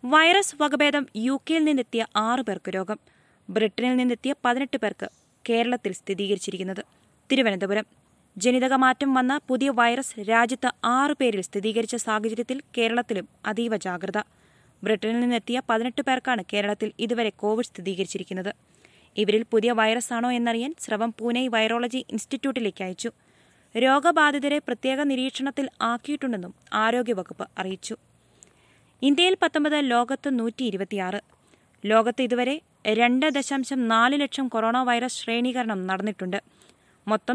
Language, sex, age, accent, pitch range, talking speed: Malayalam, female, 20-39, native, 220-260 Hz, 100 wpm